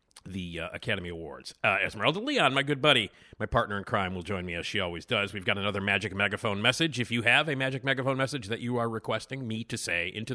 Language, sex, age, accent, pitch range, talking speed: English, male, 50-69, American, 95-130 Hz, 245 wpm